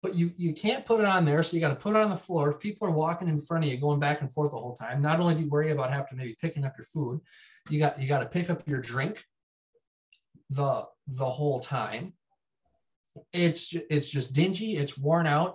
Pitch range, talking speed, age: 135-170 Hz, 245 wpm, 20-39